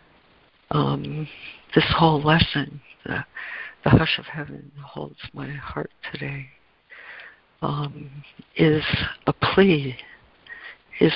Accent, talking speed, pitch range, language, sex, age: American, 95 wpm, 140-155 Hz, English, female, 60-79